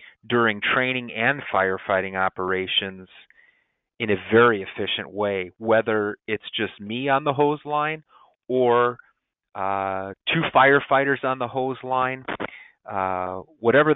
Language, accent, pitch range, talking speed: English, American, 100-115 Hz, 120 wpm